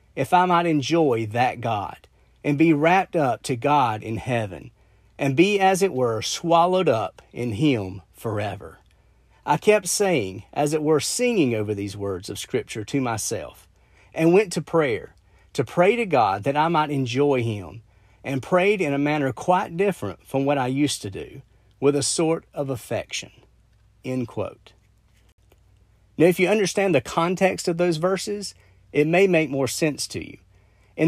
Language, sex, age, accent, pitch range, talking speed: English, male, 40-59, American, 115-170 Hz, 165 wpm